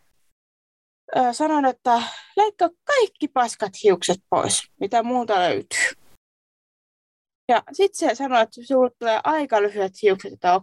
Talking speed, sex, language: 120 wpm, female, Finnish